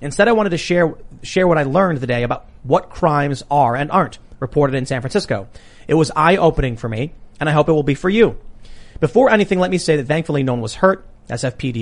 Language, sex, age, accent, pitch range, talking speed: English, male, 40-59, American, 130-175 Hz, 240 wpm